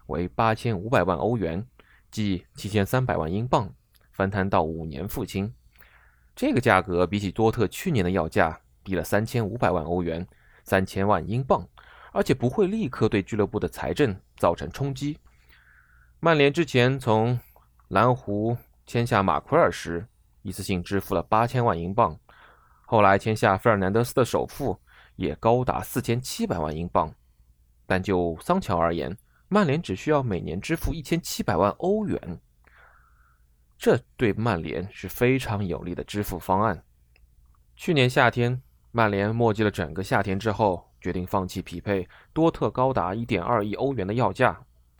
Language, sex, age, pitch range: Chinese, male, 20-39, 85-120 Hz